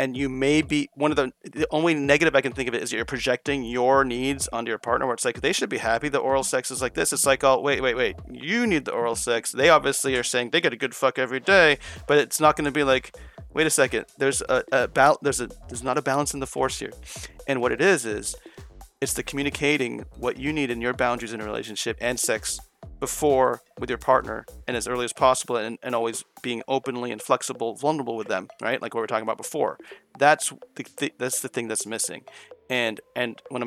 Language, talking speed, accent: English, 245 wpm, American